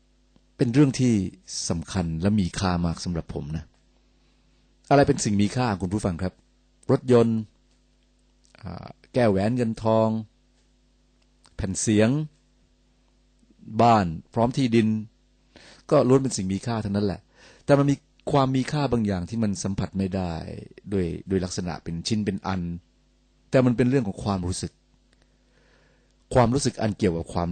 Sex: male